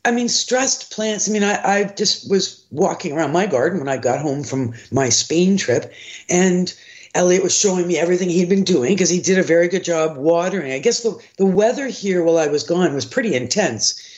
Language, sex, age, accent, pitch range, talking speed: English, female, 50-69, American, 160-200 Hz, 220 wpm